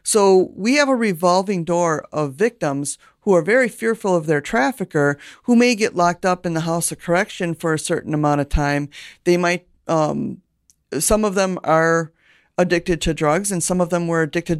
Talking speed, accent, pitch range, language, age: 195 wpm, American, 160-185 Hz, English, 50-69